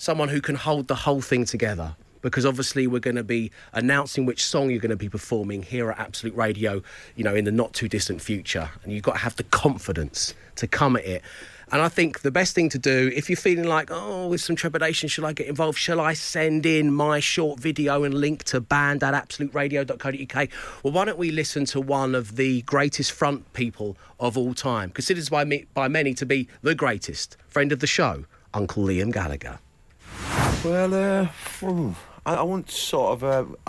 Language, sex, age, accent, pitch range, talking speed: English, male, 30-49, British, 90-145 Hz, 200 wpm